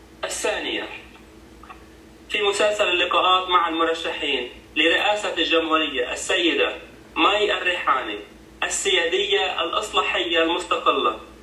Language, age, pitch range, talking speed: Arabic, 30-49, 160-190 Hz, 75 wpm